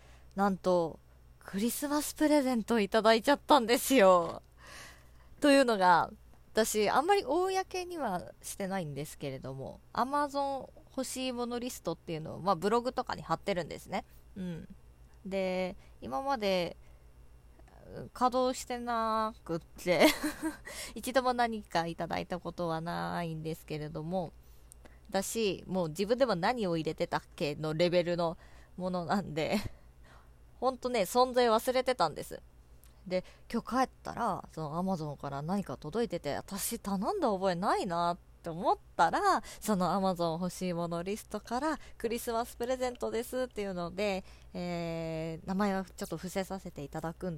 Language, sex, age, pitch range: Japanese, female, 20-39, 155-230 Hz